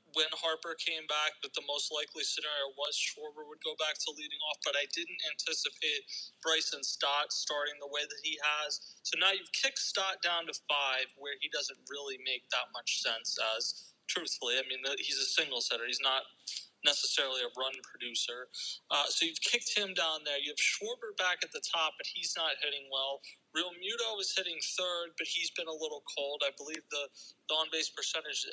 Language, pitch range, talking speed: English, 145-205 Hz, 200 wpm